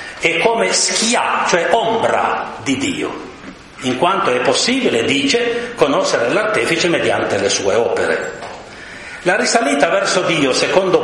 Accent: native